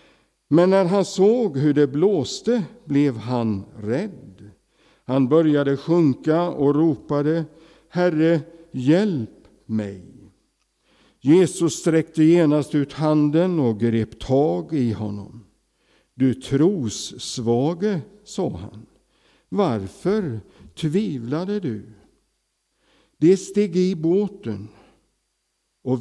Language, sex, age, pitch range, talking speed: English, male, 60-79, 115-160 Hz, 95 wpm